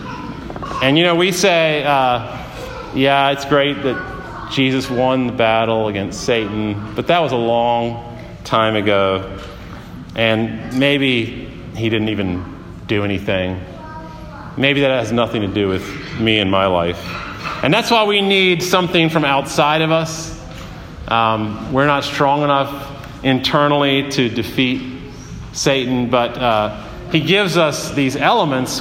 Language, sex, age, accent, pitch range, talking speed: English, male, 40-59, American, 115-145 Hz, 140 wpm